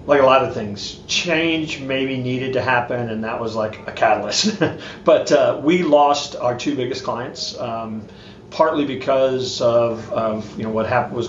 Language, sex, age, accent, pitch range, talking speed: English, male, 40-59, American, 110-130 Hz, 180 wpm